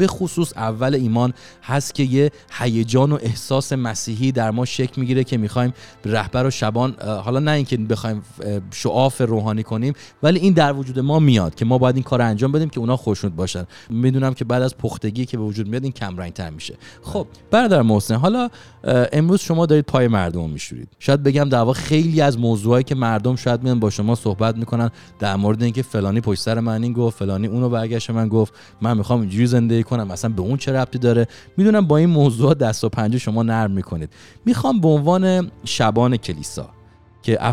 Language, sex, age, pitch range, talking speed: English, male, 30-49, 110-130 Hz, 190 wpm